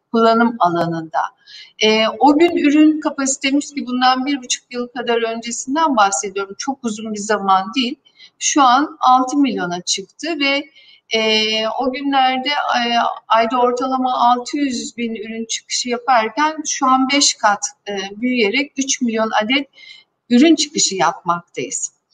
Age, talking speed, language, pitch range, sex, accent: 60-79, 135 wpm, Turkish, 225-285 Hz, female, native